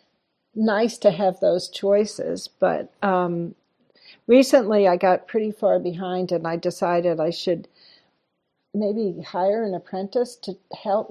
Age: 60-79